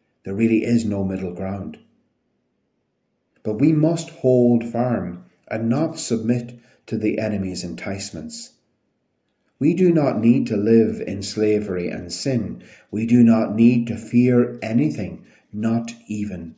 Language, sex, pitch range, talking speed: English, male, 100-125 Hz, 135 wpm